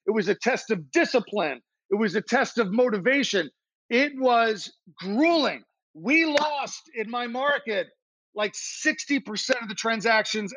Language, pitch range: English, 190-250 Hz